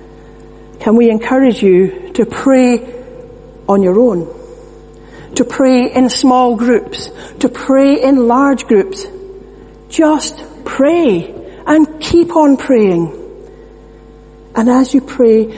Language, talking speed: English, 110 wpm